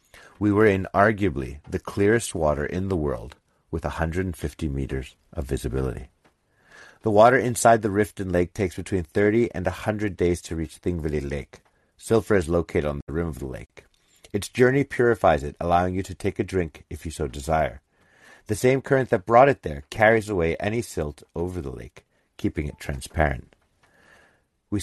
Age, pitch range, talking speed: 50-69, 80-105 Hz, 175 wpm